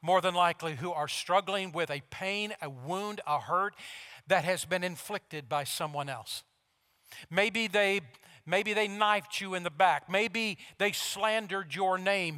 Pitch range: 155-210 Hz